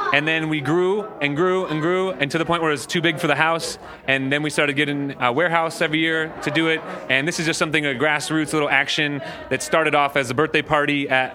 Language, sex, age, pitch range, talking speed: English, male, 30-49, 135-155 Hz, 260 wpm